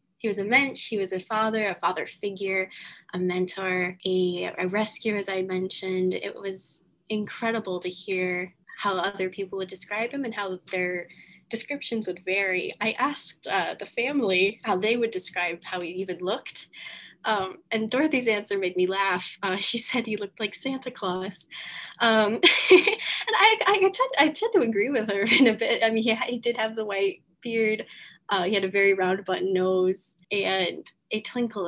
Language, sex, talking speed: English, female, 180 wpm